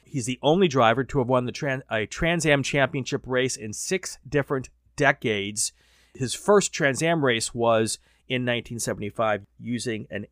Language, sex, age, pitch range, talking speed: English, male, 30-49, 110-140 Hz, 150 wpm